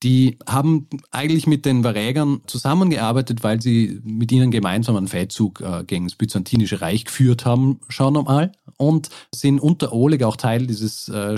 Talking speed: 160 wpm